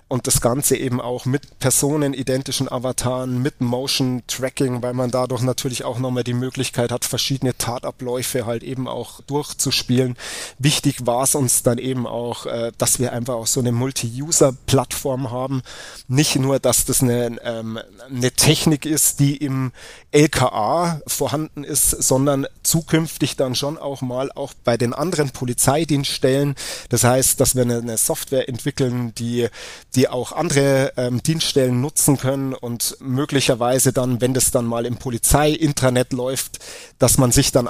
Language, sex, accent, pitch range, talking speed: German, male, German, 125-140 Hz, 150 wpm